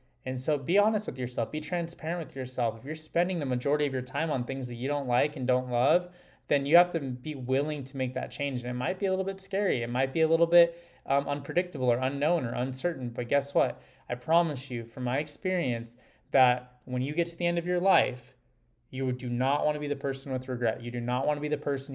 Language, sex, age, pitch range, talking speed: English, male, 20-39, 120-145 Hz, 250 wpm